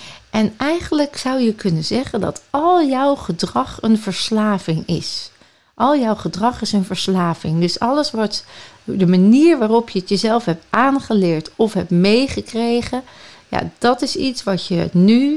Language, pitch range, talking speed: Dutch, 185-240 Hz, 150 wpm